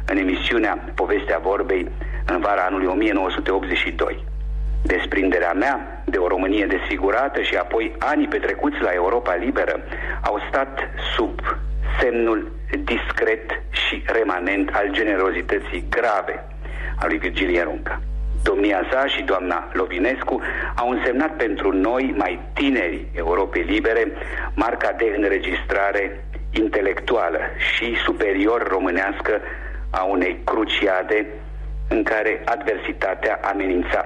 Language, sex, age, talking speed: Romanian, male, 50-69, 110 wpm